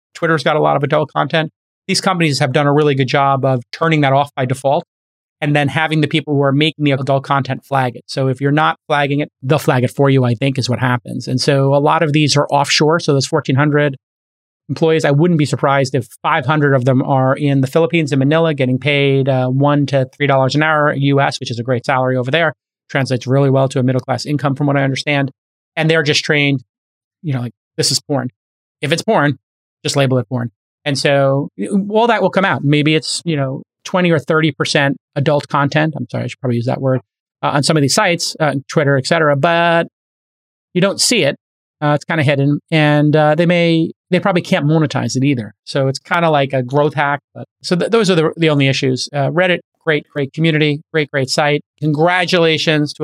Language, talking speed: English, 225 wpm